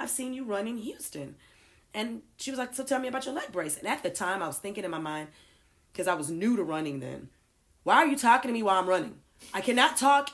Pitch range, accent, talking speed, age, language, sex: 165-245 Hz, American, 265 wpm, 30-49, English, female